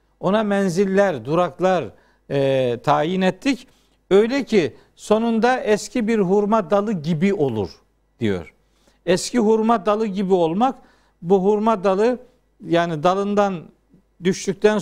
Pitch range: 175-225 Hz